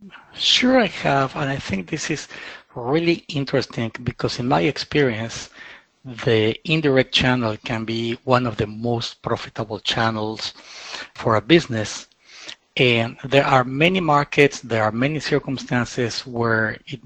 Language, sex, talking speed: English, male, 135 wpm